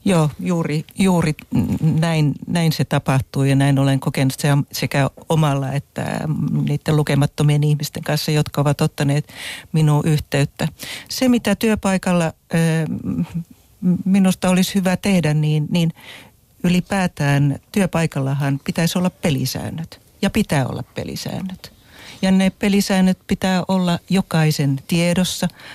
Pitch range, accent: 145-185 Hz, native